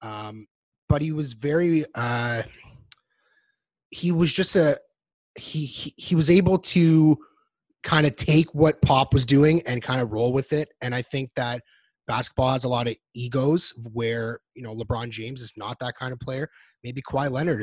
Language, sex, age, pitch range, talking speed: English, male, 30-49, 110-145 Hz, 180 wpm